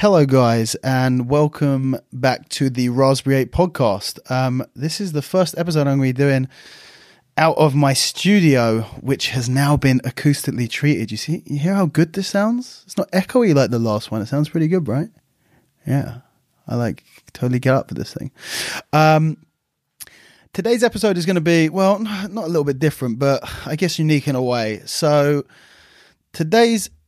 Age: 20-39